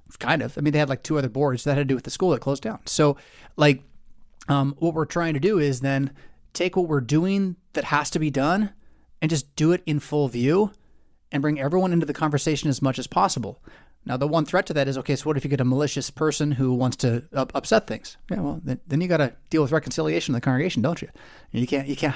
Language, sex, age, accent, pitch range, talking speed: English, male, 20-39, American, 135-165 Hz, 265 wpm